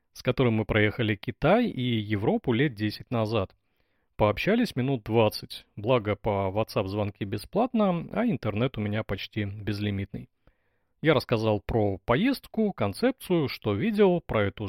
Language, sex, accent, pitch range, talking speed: Russian, male, native, 105-150 Hz, 135 wpm